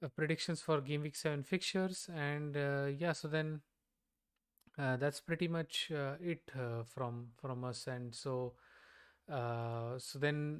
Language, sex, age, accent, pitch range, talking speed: English, male, 20-39, Indian, 130-150 Hz, 155 wpm